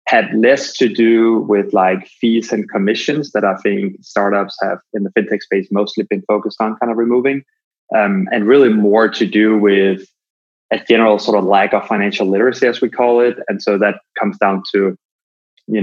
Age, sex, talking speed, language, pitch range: 20-39, male, 195 wpm, English, 100-125 Hz